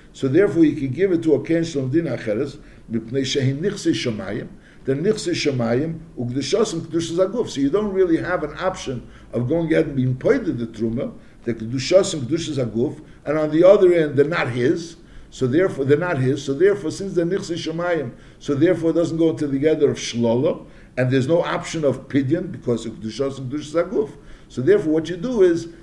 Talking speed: 190 wpm